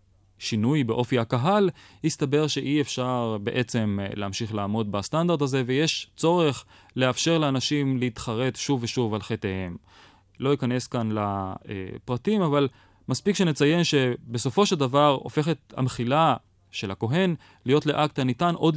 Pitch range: 105-135 Hz